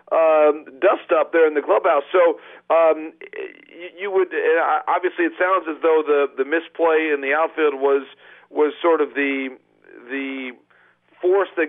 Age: 40-59